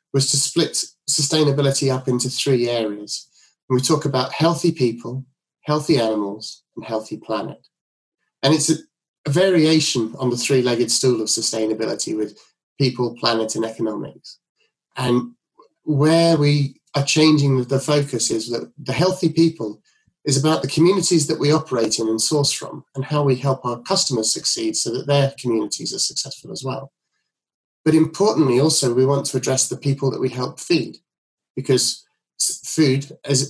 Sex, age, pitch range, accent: male, 30-49, 120-155 Hz, British